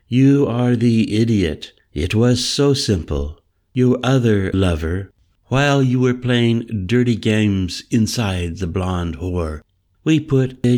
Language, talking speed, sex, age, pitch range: English, 135 wpm, male, 60-79, 90-115 Hz